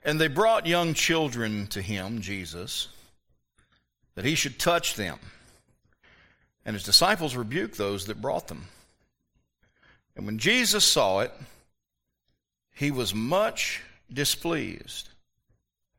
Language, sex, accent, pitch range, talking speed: English, male, American, 100-145 Hz, 115 wpm